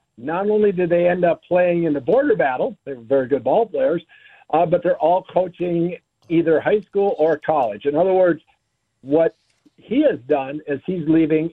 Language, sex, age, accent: English, male, 60-79, American